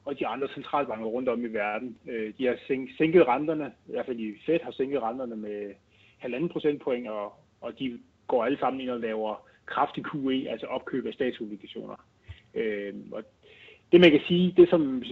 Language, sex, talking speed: Danish, male, 190 wpm